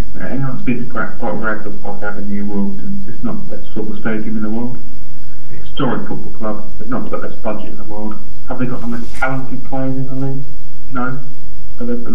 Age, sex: 30-49, male